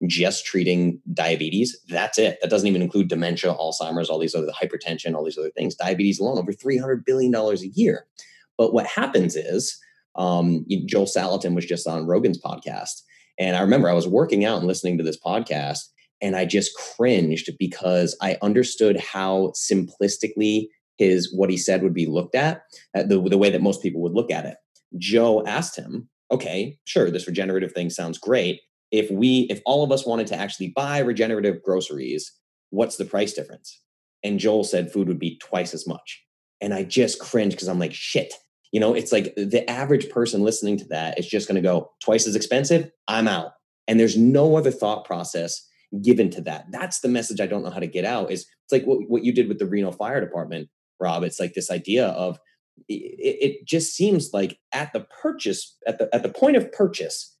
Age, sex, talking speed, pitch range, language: 30-49, male, 205 wpm, 90-120 Hz, English